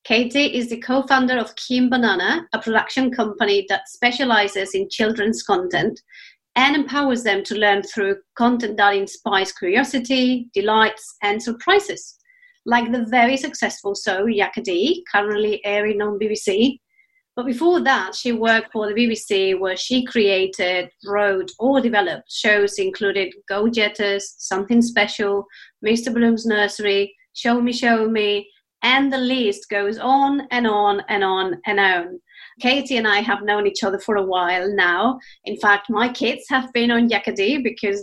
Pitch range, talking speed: 200-250 Hz, 155 wpm